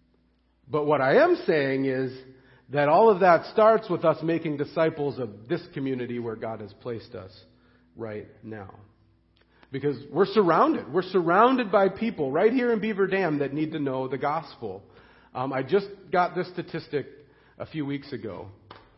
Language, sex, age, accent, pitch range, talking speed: English, male, 40-59, American, 130-185 Hz, 170 wpm